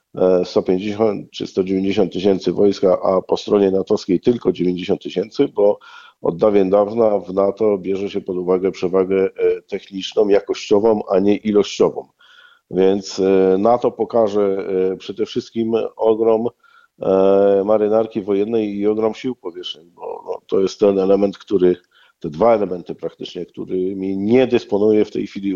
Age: 50-69